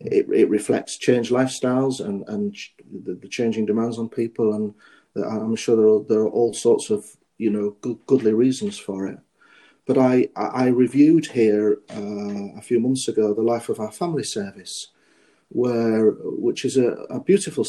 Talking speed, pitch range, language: 175 wpm, 110-140 Hz, English